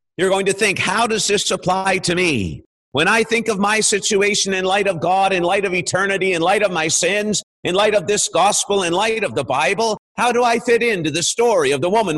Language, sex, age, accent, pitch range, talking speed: English, male, 50-69, American, 160-220 Hz, 240 wpm